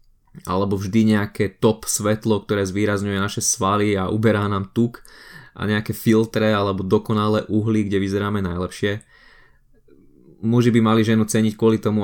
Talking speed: 145 wpm